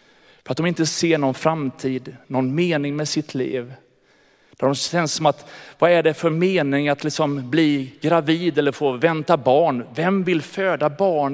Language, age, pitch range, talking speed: Swedish, 30-49, 135-170 Hz, 175 wpm